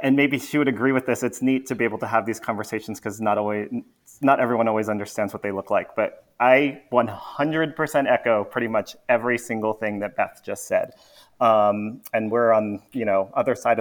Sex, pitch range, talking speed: male, 100-120 Hz, 205 wpm